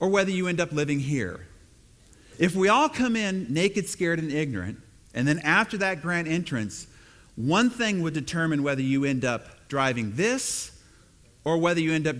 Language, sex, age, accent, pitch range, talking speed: English, male, 40-59, American, 135-190 Hz, 180 wpm